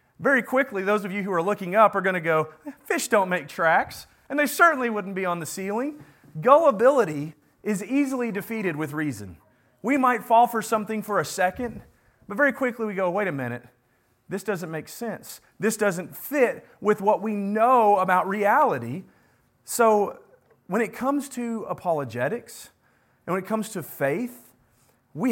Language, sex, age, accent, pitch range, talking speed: English, male, 40-59, American, 180-235 Hz, 175 wpm